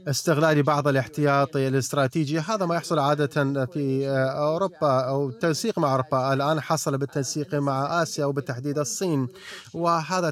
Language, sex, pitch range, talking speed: Arabic, male, 135-160 Hz, 130 wpm